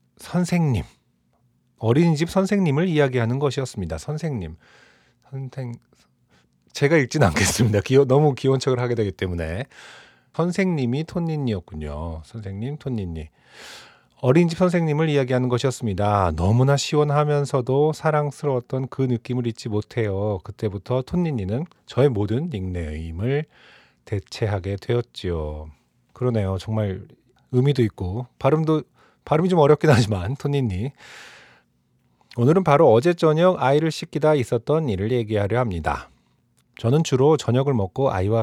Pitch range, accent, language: 100-145 Hz, native, Korean